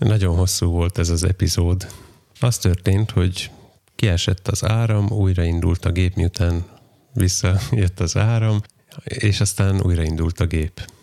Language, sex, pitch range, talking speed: Hungarian, male, 90-105 Hz, 130 wpm